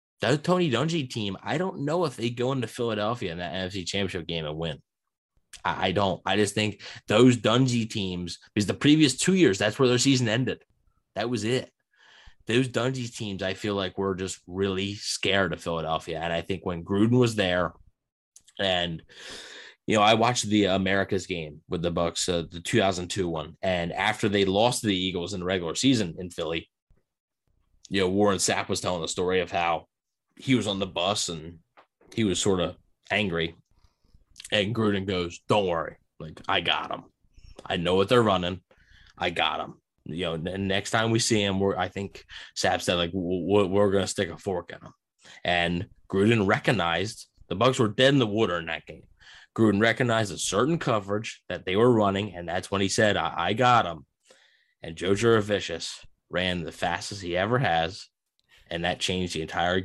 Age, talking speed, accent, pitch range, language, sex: 20-39, 195 wpm, American, 90-115 Hz, English, male